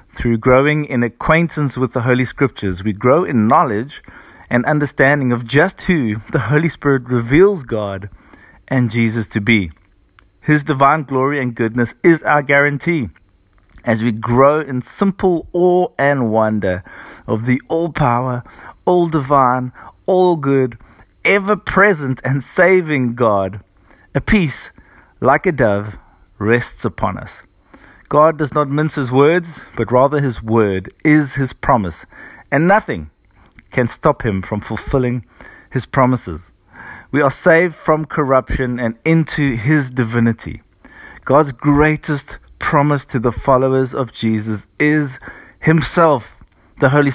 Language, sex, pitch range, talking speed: English, male, 110-150 Hz, 130 wpm